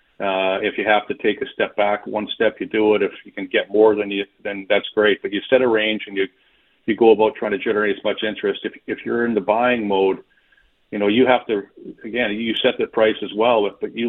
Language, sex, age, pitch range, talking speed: English, male, 40-59, 105-120 Hz, 260 wpm